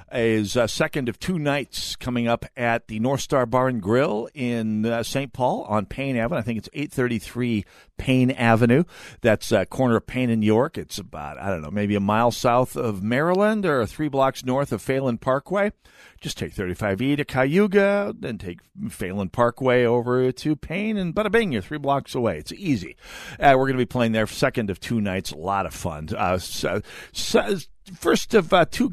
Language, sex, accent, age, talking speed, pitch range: English, male, American, 50-69, 195 wpm, 105-140 Hz